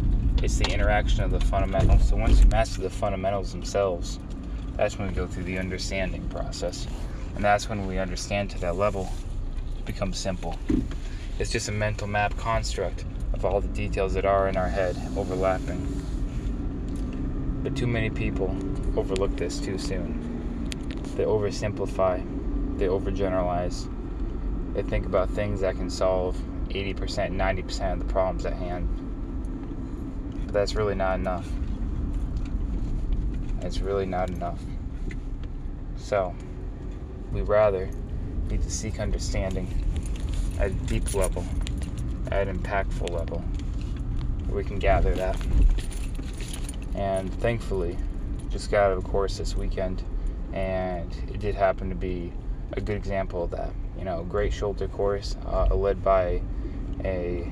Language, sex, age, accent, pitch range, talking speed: English, male, 20-39, American, 90-100 Hz, 140 wpm